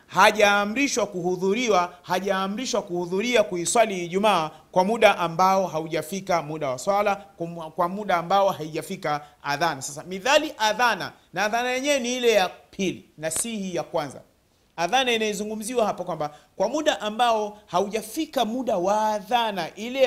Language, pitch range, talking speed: Swahili, 170-225 Hz, 135 wpm